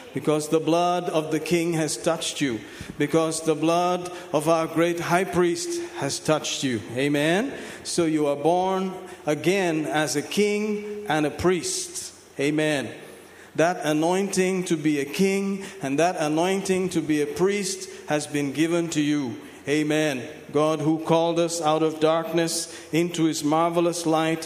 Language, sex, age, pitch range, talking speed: English, male, 50-69, 155-185 Hz, 155 wpm